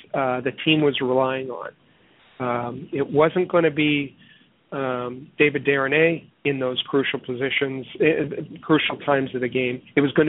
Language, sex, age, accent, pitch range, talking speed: English, male, 50-69, American, 130-160 Hz, 165 wpm